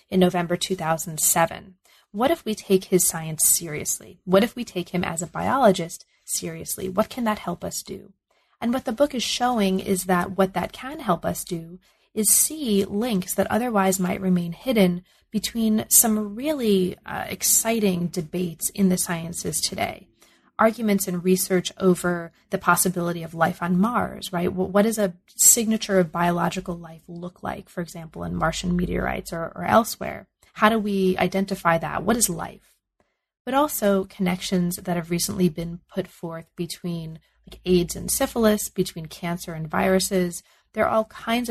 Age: 30-49